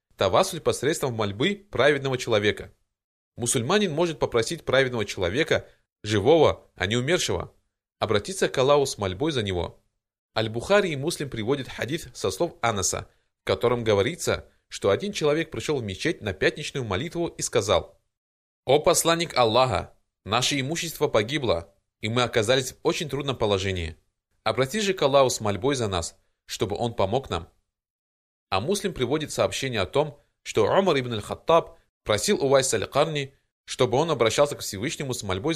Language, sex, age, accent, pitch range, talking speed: Russian, male, 20-39, native, 100-145 Hz, 150 wpm